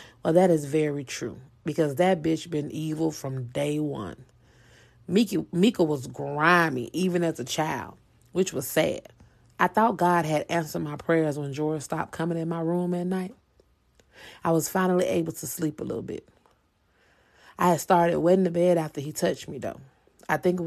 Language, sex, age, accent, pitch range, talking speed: English, female, 30-49, American, 155-180 Hz, 185 wpm